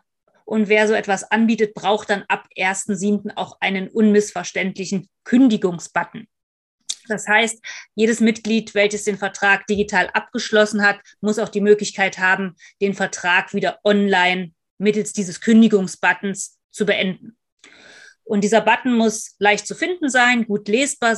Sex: female